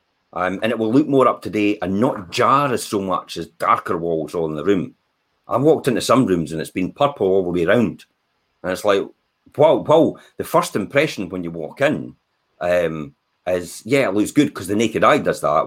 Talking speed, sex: 220 wpm, male